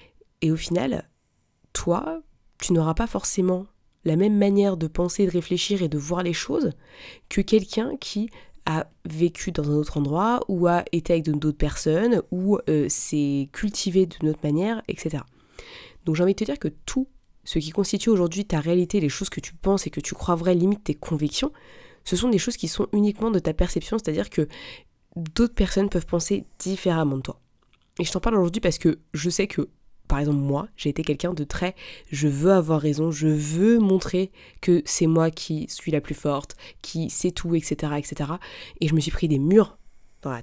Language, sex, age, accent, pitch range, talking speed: French, female, 20-39, French, 155-195 Hz, 200 wpm